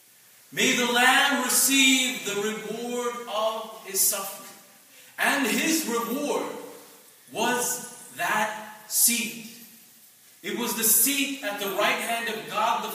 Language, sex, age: English, male, 40-59